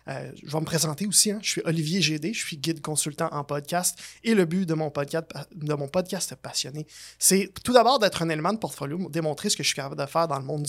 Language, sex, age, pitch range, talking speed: French, male, 20-39, 155-190 Hz, 245 wpm